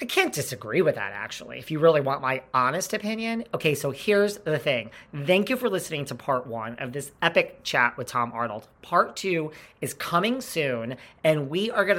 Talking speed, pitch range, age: 205 wpm, 130-175 Hz, 40-59